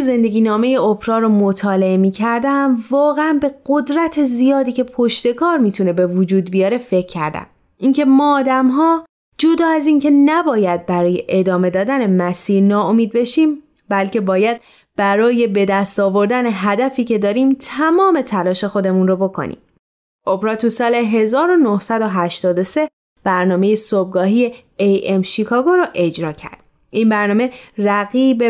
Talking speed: 130 wpm